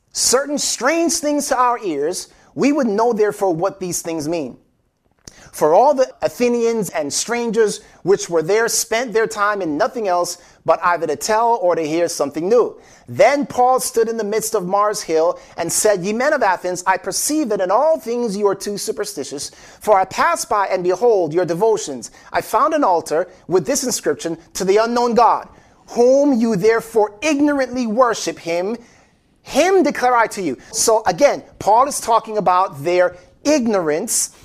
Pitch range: 175-250 Hz